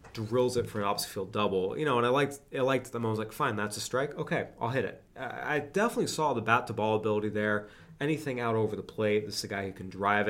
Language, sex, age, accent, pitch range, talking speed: English, male, 20-39, American, 100-125 Hz, 260 wpm